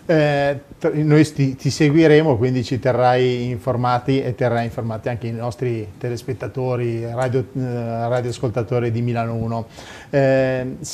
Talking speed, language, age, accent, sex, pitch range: 125 wpm, Italian, 30-49, native, male, 120-135 Hz